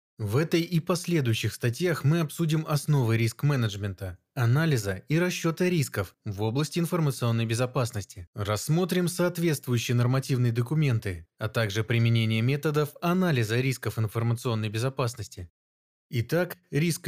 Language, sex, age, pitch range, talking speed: Russian, male, 20-39, 115-155 Hz, 110 wpm